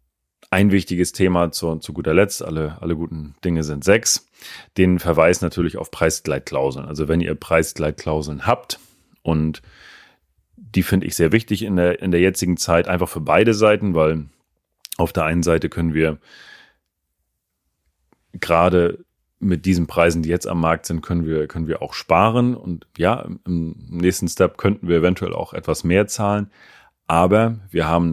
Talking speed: 160 wpm